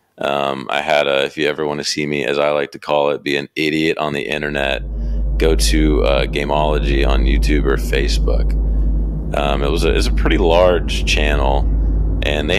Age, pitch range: 30-49, 70-80 Hz